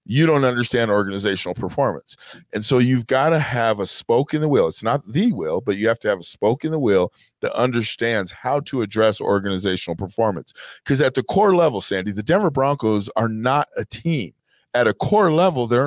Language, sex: English, male